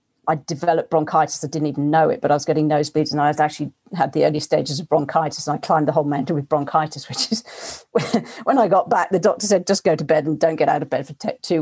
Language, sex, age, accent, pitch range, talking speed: English, female, 40-59, British, 150-170 Hz, 270 wpm